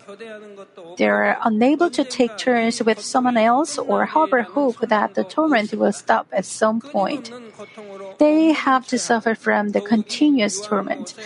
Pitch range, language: 220-285 Hz, Korean